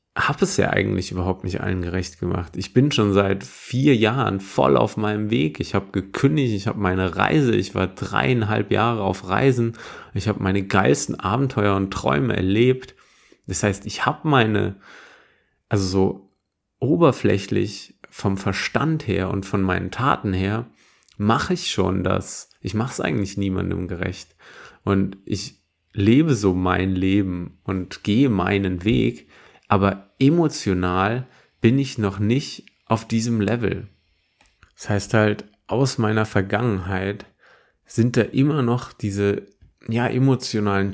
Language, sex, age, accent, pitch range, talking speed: German, male, 30-49, German, 95-120 Hz, 145 wpm